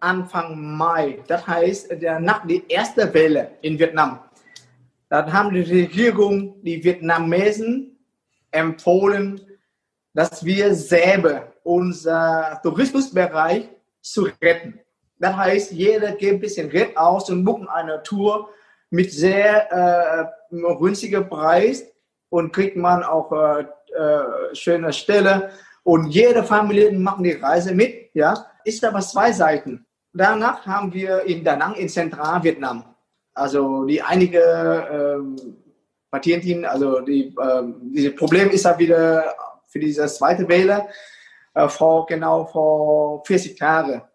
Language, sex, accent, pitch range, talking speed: German, male, German, 155-200 Hz, 125 wpm